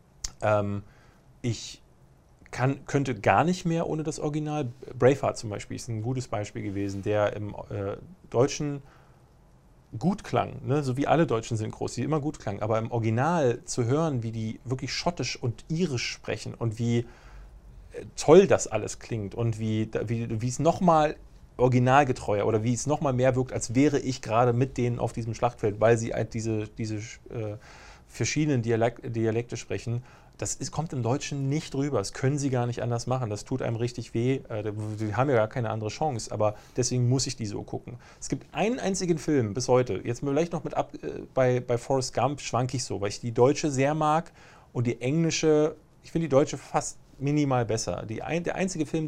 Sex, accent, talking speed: male, German, 180 wpm